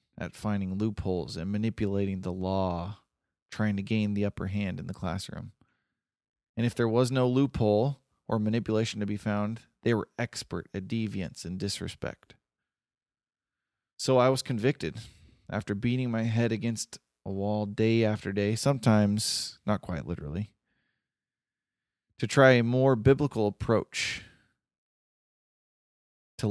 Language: English